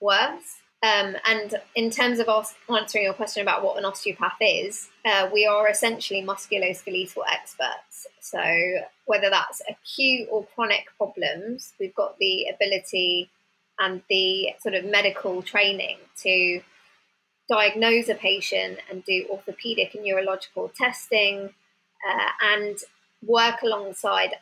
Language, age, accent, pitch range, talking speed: English, 20-39, British, 195-230 Hz, 125 wpm